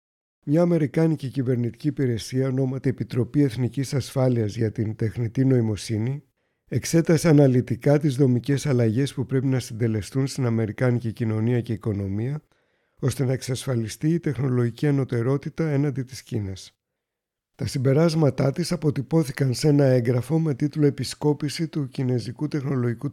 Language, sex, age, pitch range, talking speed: Greek, male, 60-79, 120-145 Hz, 125 wpm